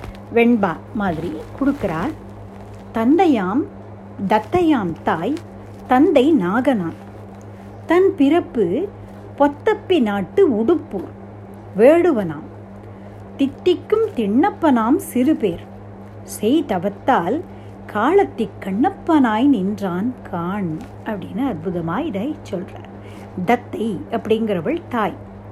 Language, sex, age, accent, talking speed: Tamil, female, 60-79, native, 55 wpm